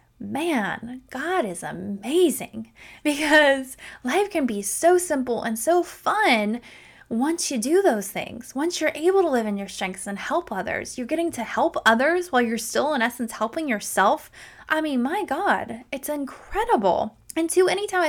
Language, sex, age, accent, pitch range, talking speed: English, female, 10-29, American, 210-295 Hz, 165 wpm